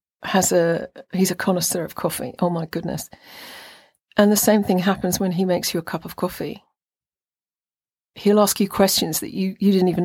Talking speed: 190 wpm